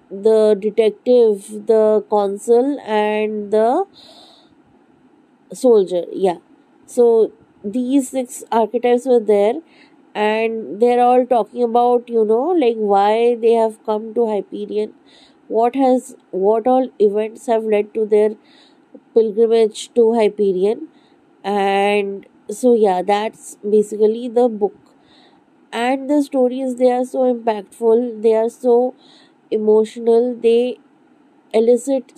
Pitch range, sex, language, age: 215-280 Hz, female, English, 20-39